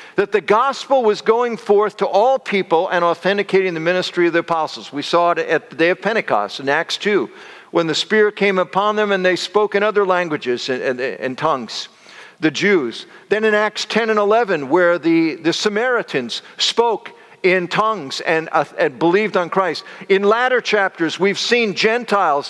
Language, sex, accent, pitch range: English, male, American, 175-230 Hz